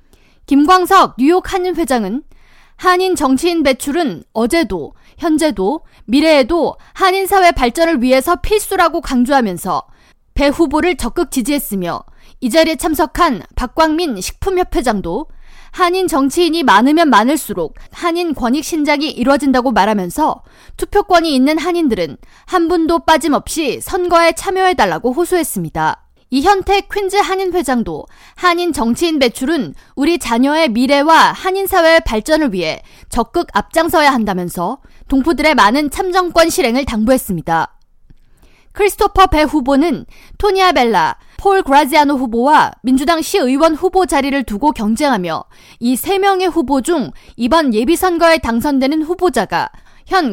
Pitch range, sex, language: 260-350 Hz, female, Korean